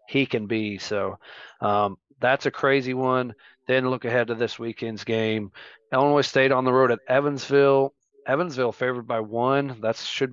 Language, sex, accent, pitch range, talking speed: English, male, American, 115-130 Hz, 170 wpm